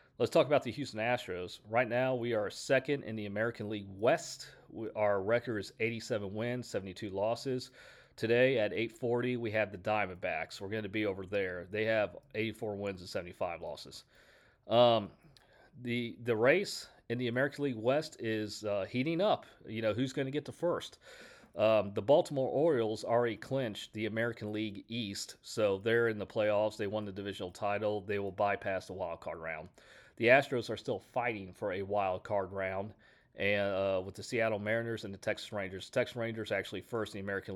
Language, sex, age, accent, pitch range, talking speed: English, male, 40-59, American, 100-115 Hz, 195 wpm